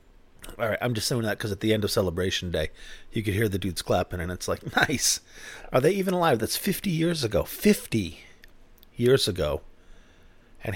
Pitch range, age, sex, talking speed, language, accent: 95-130 Hz, 40-59, male, 190 wpm, English, American